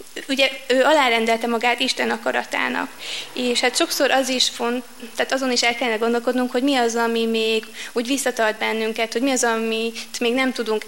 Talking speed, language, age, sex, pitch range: 180 wpm, Hungarian, 20-39, female, 230-260 Hz